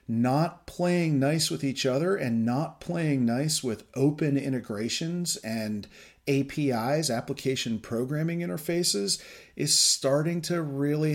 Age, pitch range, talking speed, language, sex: 40-59, 115-155 Hz, 120 wpm, English, male